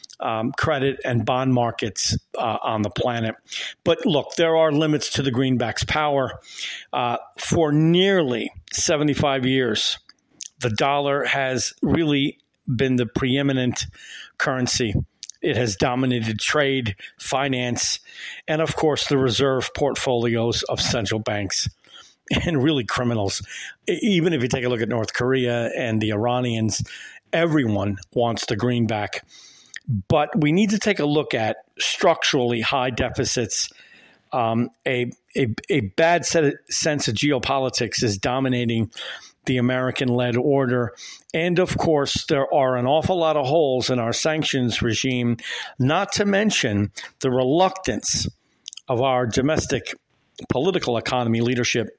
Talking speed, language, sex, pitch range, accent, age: 130 wpm, English, male, 120-145 Hz, American, 50-69